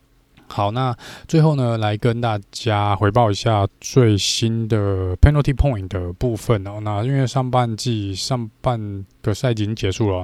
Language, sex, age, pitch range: Chinese, male, 20-39, 95-120 Hz